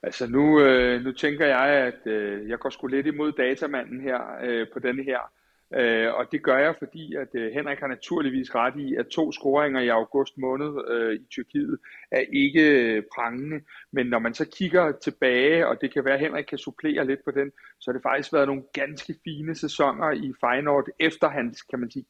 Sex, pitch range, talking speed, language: male, 130-155 Hz, 195 wpm, Danish